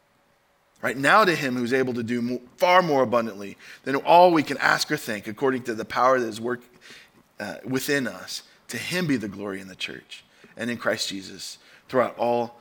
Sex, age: male, 20-39